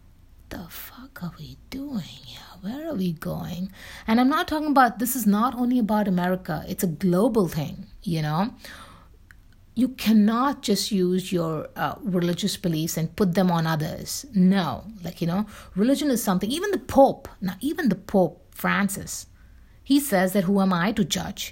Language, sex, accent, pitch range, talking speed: English, female, Indian, 165-205 Hz, 175 wpm